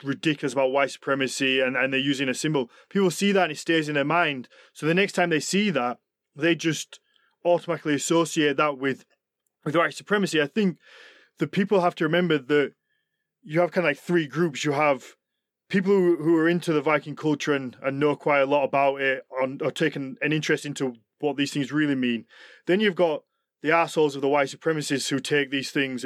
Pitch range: 140-180 Hz